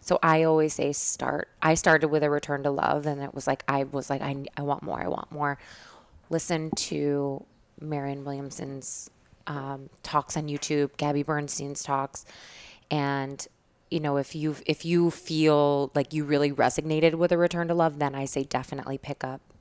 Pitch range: 140-160 Hz